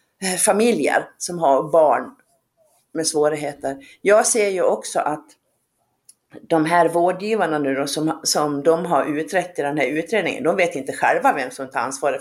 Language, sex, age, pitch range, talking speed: Swedish, female, 50-69, 170-255 Hz, 155 wpm